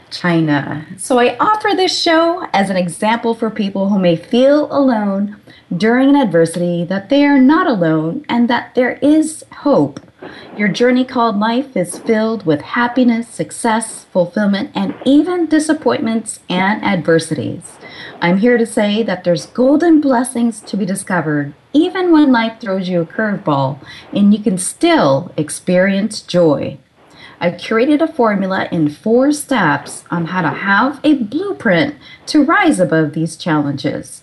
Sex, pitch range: female, 175-265 Hz